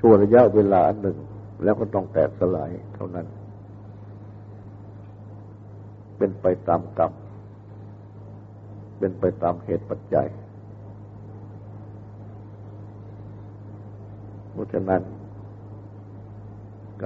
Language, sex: Thai, male